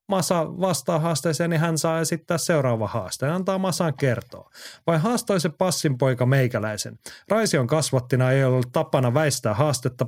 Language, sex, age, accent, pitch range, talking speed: Finnish, male, 30-49, native, 120-160 Hz, 155 wpm